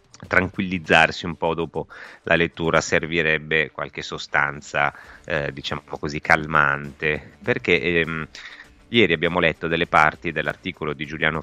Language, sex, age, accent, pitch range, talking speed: Italian, male, 30-49, native, 75-90 Hz, 130 wpm